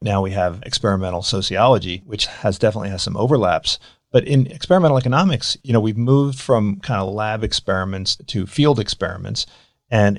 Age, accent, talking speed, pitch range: 40-59, American, 165 wpm, 100-130 Hz